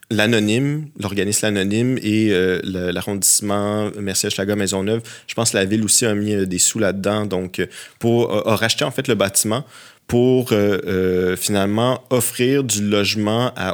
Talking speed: 170 wpm